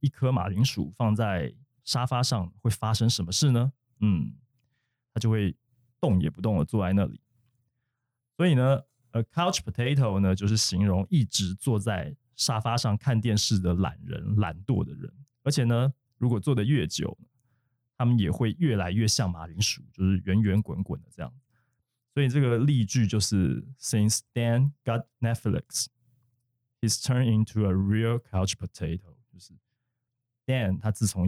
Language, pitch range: Chinese, 100-125 Hz